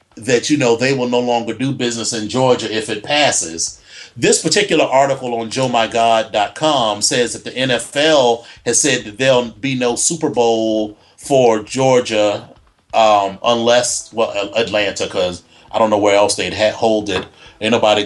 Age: 30-49